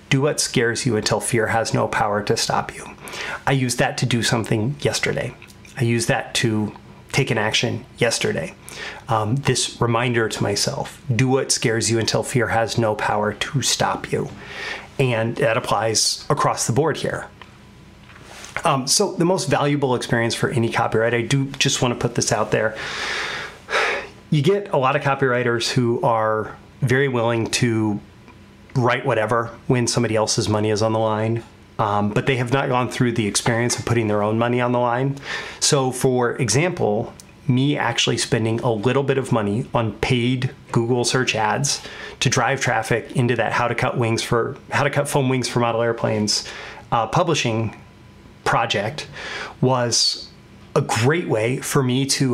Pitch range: 110-135 Hz